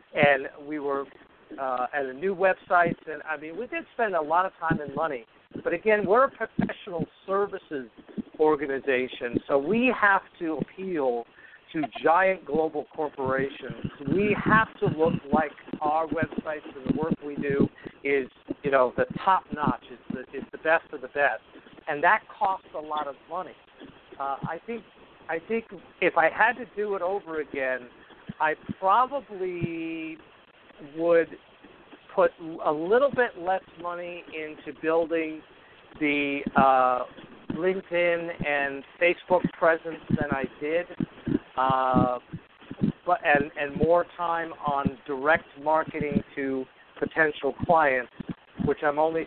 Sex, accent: male, American